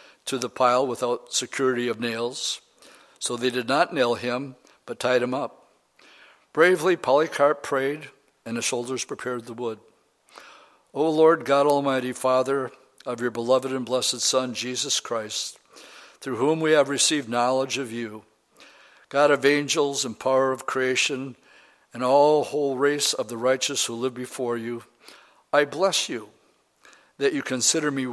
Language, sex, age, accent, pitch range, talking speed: English, male, 60-79, American, 125-145 Hz, 155 wpm